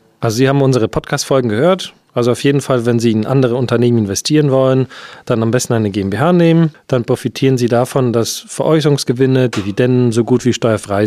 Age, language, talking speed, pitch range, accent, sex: 40-59, German, 185 wpm, 120-155 Hz, German, male